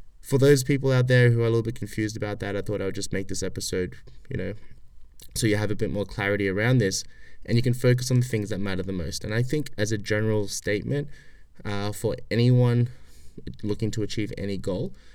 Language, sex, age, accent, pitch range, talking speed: English, male, 20-39, Australian, 100-120 Hz, 230 wpm